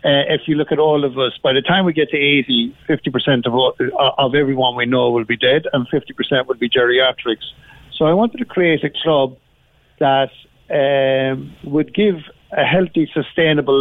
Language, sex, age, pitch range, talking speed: English, male, 50-69, 135-160 Hz, 205 wpm